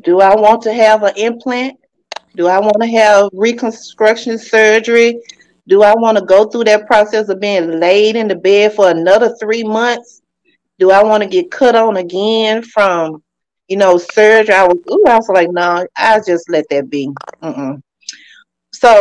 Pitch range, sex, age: 175-225 Hz, female, 30-49